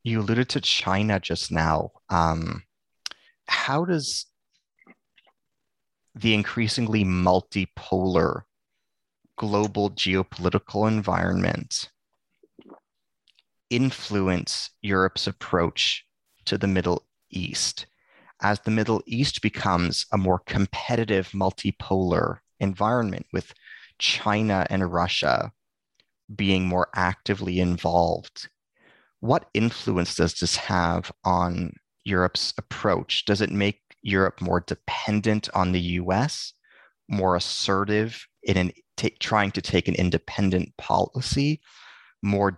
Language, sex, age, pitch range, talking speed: English, male, 30-49, 90-110 Hz, 95 wpm